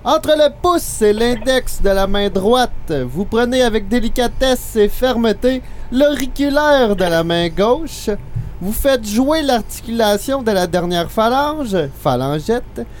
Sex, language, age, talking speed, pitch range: male, French, 30-49, 135 wpm, 170-250 Hz